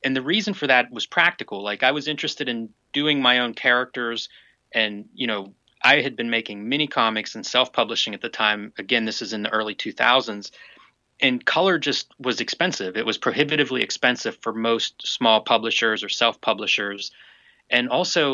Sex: male